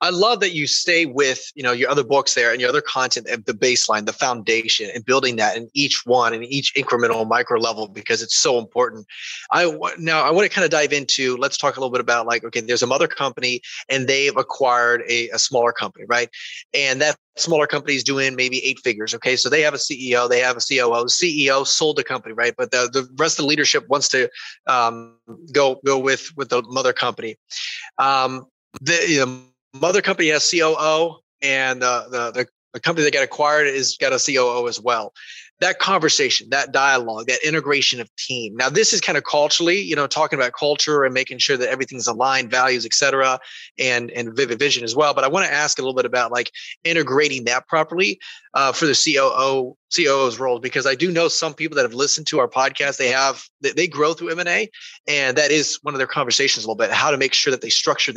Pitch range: 125-150 Hz